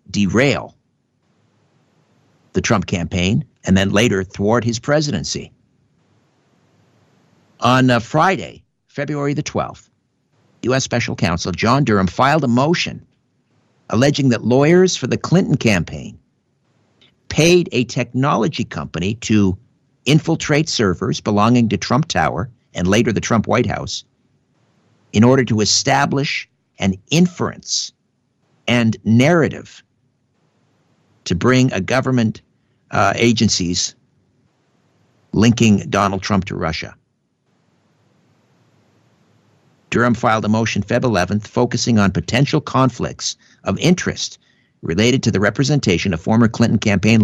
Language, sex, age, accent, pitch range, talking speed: English, male, 50-69, American, 100-130 Hz, 110 wpm